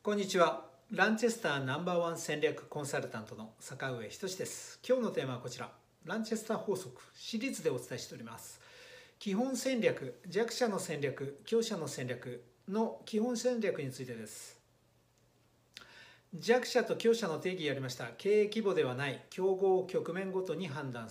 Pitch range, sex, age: 140-225 Hz, male, 60-79